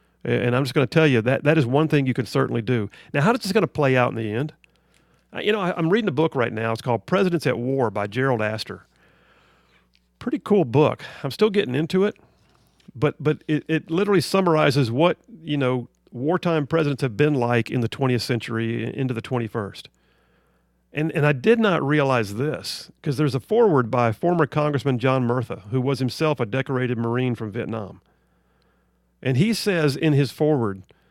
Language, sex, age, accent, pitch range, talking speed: English, male, 50-69, American, 115-155 Hz, 200 wpm